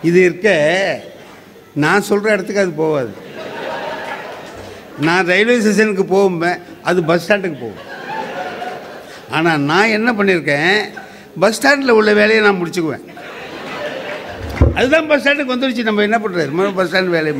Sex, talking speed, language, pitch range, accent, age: male, 125 wpm, Tamil, 170-240 Hz, native, 50-69